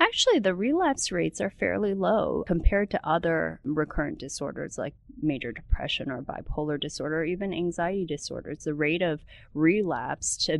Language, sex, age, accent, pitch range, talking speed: English, female, 30-49, American, 145-175 Hz, 145 wpm